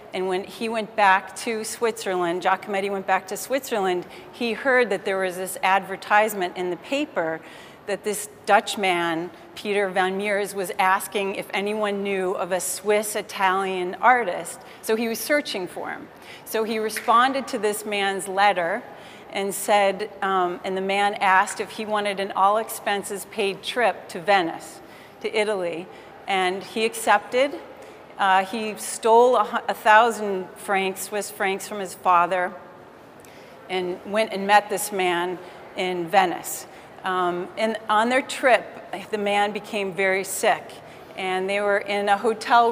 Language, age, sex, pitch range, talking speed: English, 40-59, female, 190-215 Hz, 155 wpm